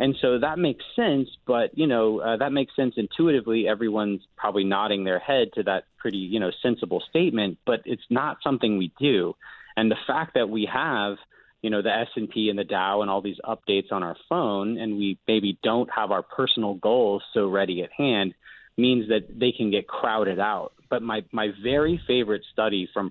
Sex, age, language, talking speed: male, 30-49, English, 200 wpm